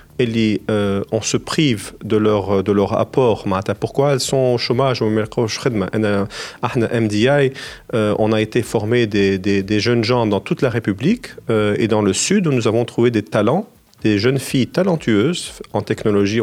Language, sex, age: Arabic, male, 40-59